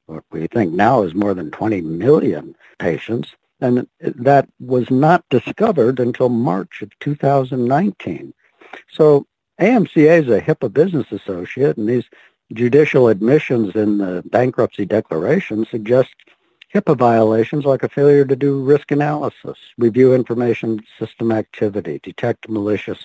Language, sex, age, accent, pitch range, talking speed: English, male, 60-79, American, 105-145 Hz, 130 wpm